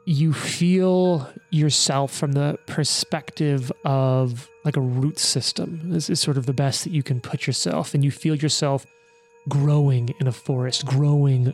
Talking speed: 160 wpm